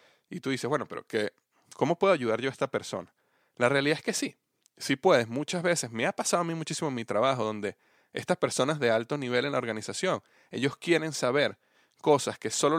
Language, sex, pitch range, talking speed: Spanish, male, 115-145 Hz, 210 wpm